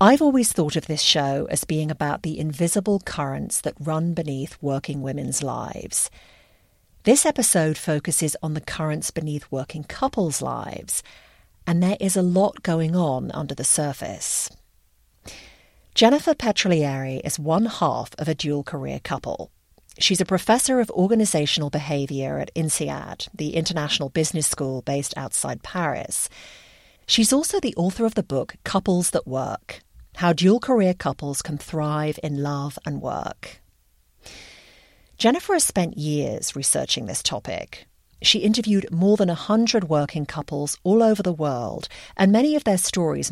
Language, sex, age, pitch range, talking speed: English, female, 50-69, 145-195 Hz, 145 wpm